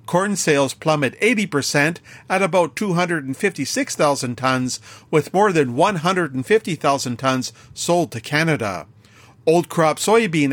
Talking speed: 110 wpm